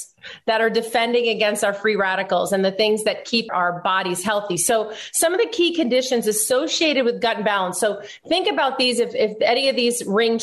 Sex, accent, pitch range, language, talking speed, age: female, American, 190-240 Hz, English, 200 wpm, 30-49